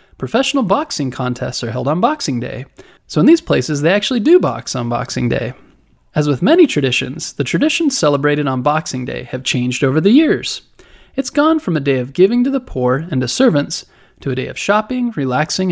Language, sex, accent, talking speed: English, male, American, 200 wpm